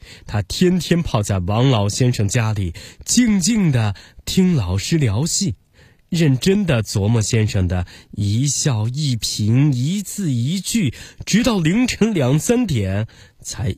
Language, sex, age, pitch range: Chinese, male, 20-39, 105-165 Hz